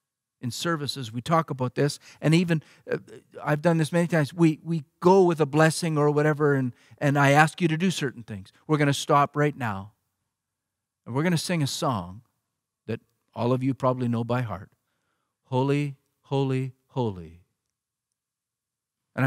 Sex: male